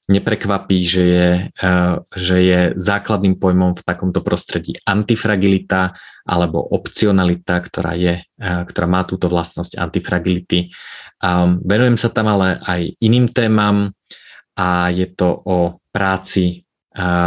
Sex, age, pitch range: male, 20-39, 90-100 Hz